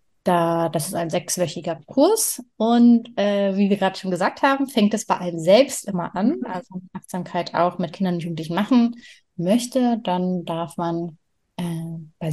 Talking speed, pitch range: 170 wpm, 170-210 Hz